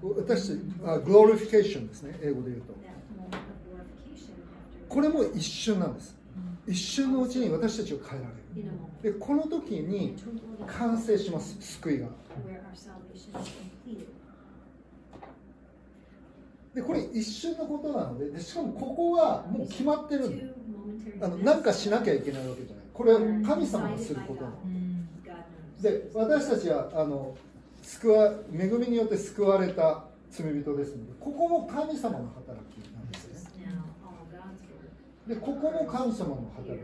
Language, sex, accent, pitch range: Japanese, male, native, 160-235 Hz